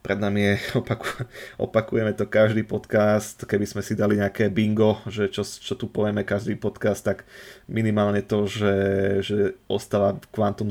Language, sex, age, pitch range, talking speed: Slovak, male, 20-39, 95-105 Hz, 150 wpm